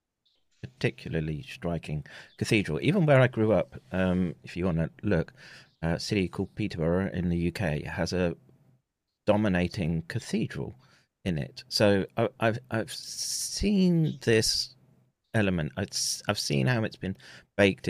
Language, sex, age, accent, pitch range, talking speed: English, male, 40-59, British, 85-115 Hz, 135 wpm